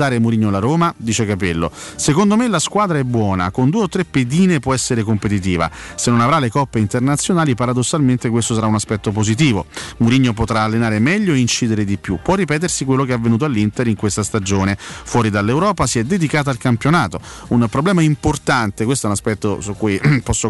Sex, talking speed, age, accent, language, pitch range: male, 195 wpm, 30-49, native, Italian, 110-145 Hz